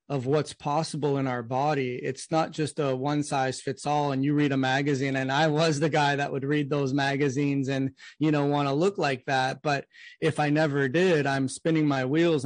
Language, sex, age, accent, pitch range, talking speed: English, male, 30-49, American, 135-155 Hz, 220 wpm